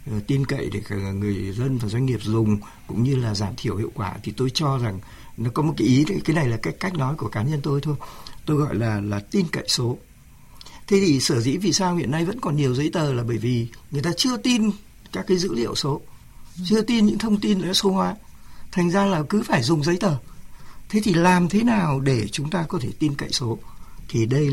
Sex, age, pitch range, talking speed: male, 60-79, 115-175 Hz, 240 wpm